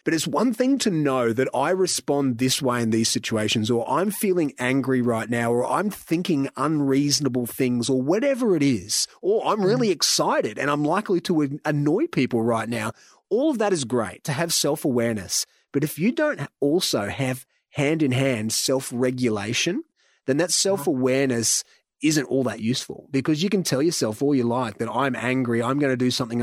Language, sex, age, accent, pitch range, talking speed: English, male, 30-49, Australian, 120-150 Hz, 180 wpm